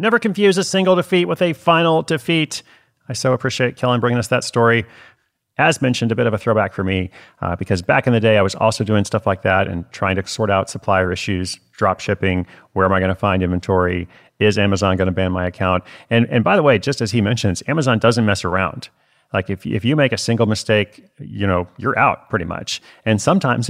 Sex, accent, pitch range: male, American, 95-125 Hz